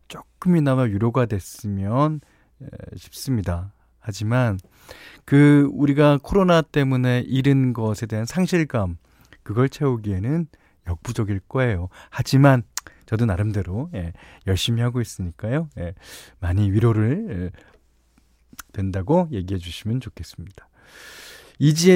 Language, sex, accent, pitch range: Korean, male, native, 90-145 Hz